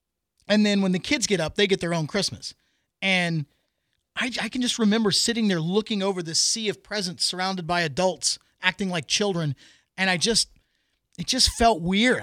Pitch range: 190-250 Hz